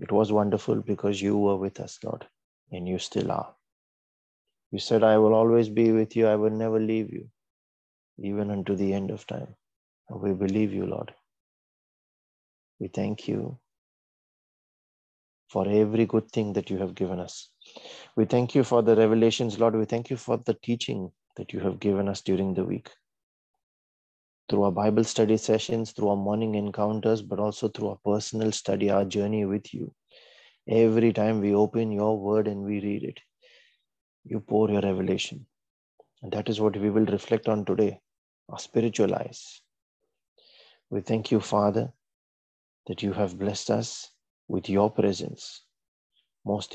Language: English